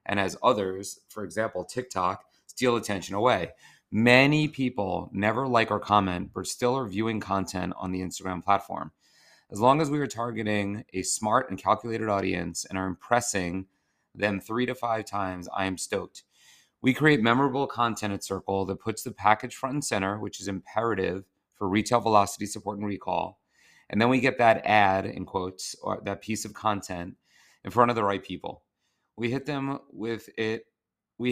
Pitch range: 95-115 Hz